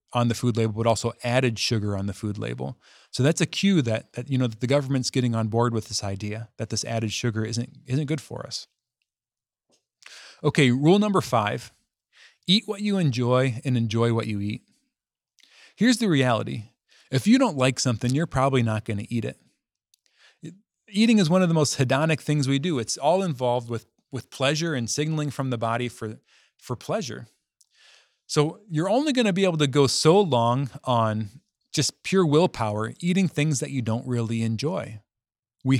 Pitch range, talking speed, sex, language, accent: 115-155 Hz, 190 wpm, male, English, American